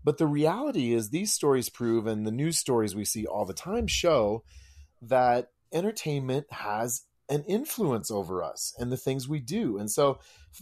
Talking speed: 180 wpm